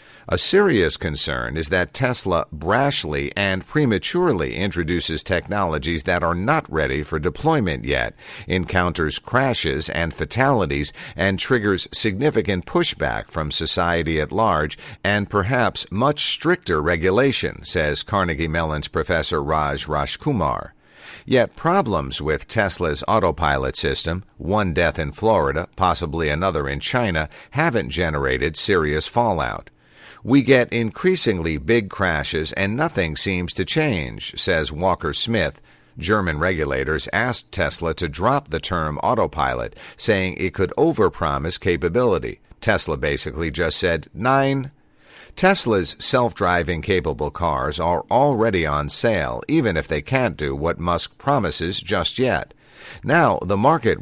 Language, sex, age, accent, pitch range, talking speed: English, male, 50-69, American, 80-105 Hz, 125 wpm